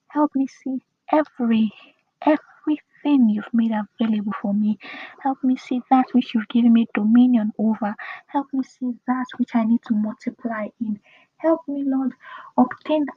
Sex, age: female, 20-39